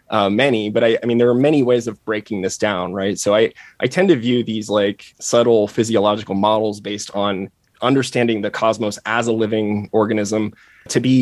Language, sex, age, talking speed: English, male, 20-39, 200 wpm